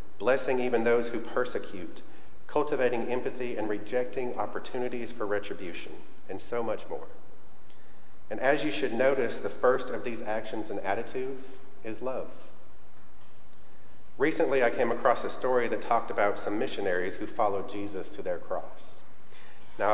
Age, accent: 40-59, American